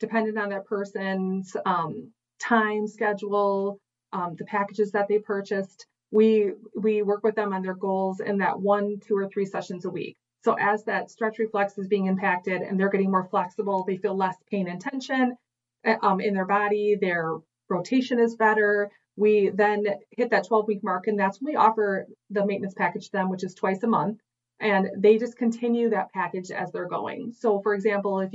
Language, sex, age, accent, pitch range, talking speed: English, female, 30-49, American, 185-210 Hz, 195 wpm